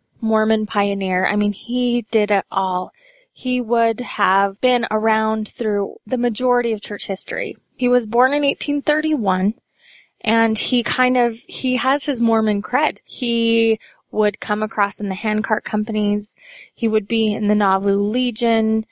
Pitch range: 205-245 Hz